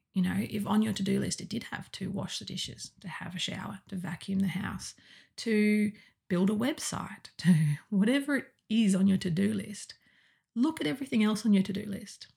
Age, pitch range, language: 30-49, 190-210 Hz, English